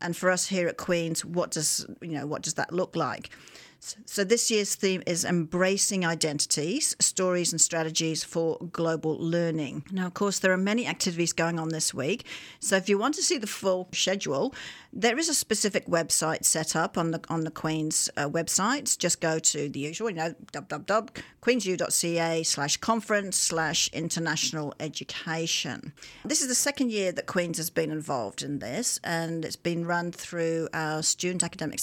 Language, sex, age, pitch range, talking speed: English, female, 50-69, 160-205 Hz, 185 wpm